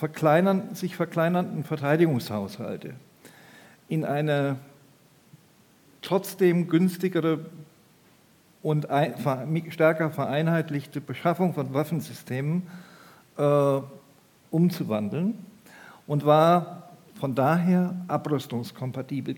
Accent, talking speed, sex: German, 60 wpm, male